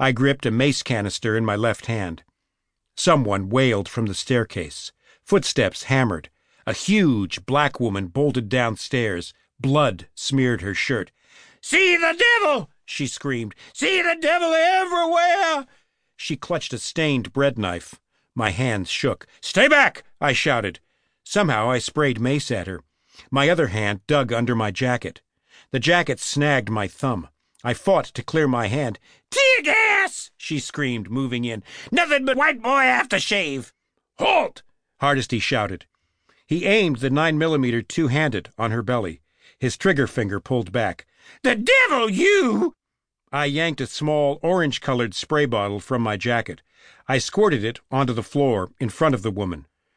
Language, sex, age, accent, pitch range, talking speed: English, male, 50-69, American, 115-160 Hz, 155 wpm